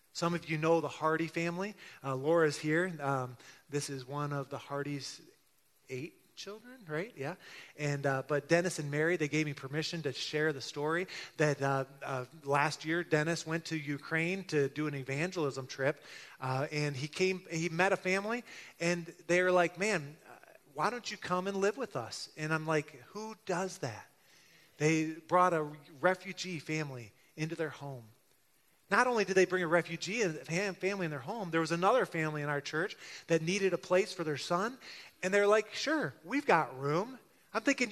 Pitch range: 150-195 Hz